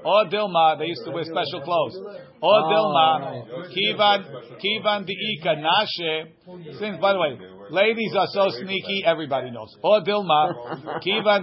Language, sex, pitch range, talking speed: English, male, 155-200 Hz, 130 wpm